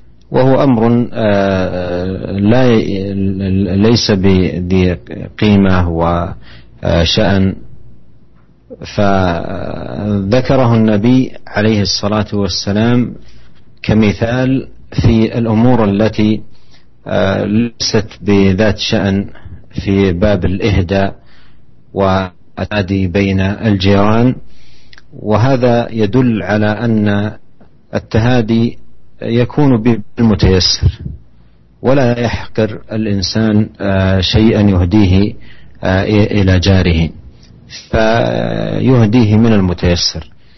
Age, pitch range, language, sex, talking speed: 40-59, 95-110 Hz, Indonesian, male, 60 wpm